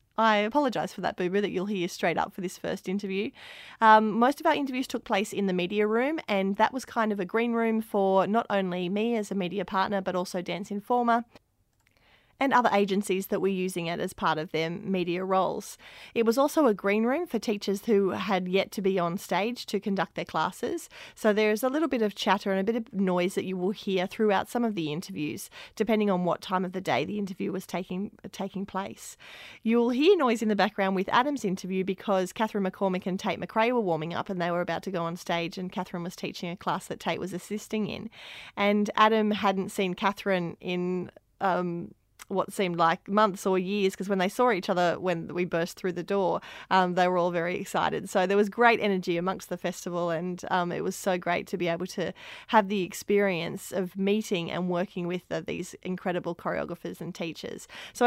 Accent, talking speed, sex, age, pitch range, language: Australian, 220 wpm, female, 30-49, 180-215 Hz, English